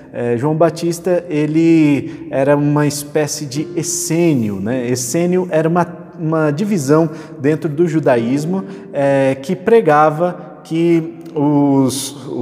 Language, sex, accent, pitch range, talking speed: Portuguese, male, Brazilian, 135-170 Hz, 110 wpm